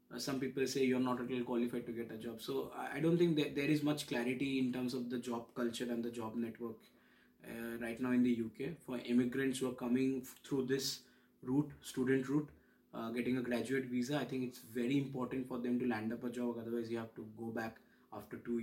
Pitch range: 120-135 Hz